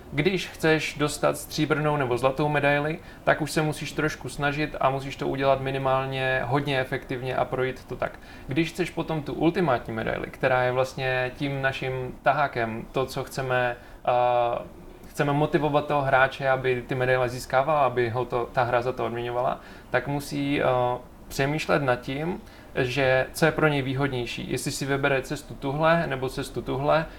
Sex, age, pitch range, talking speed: male, 20-39, 130-155 Hz, 170 wpm